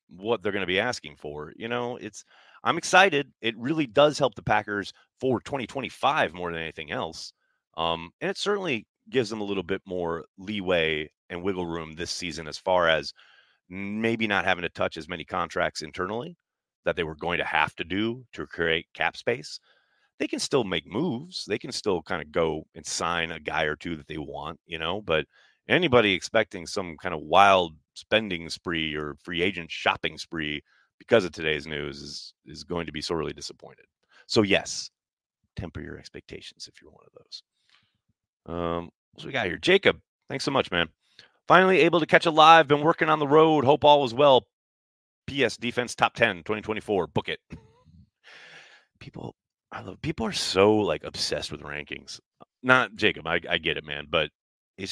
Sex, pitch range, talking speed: male, 85-120 Hz, 190 wpm